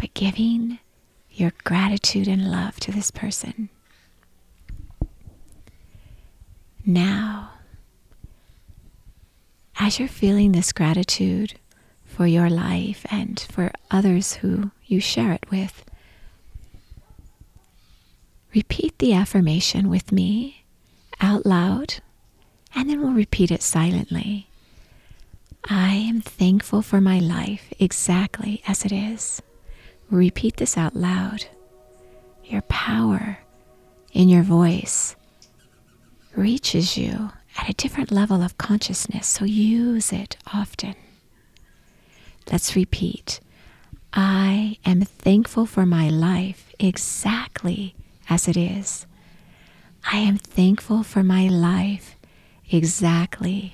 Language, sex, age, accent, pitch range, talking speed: English, female, 40-59, American, 160-205 Hz, 100 wpm